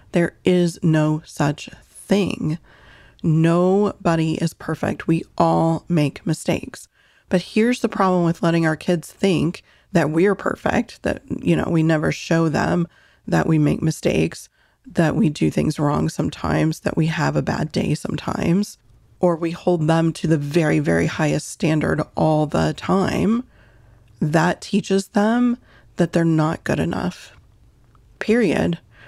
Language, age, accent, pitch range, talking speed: English, 30-49, American, 155-190 Hz, 145 wpm